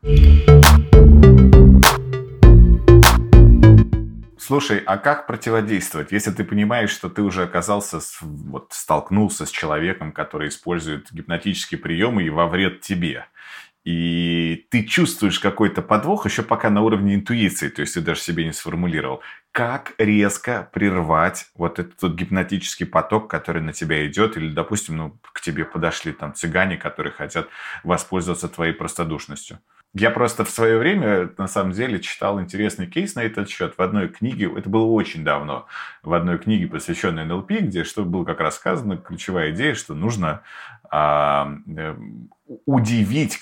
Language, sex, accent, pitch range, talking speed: Russian, male, native, 80-110 Hz, 140 wpm